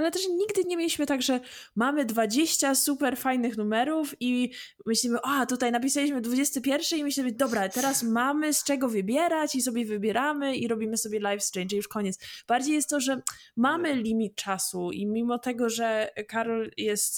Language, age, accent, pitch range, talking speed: Polish, 20-39, native, 215-270 Hz, 175 wpm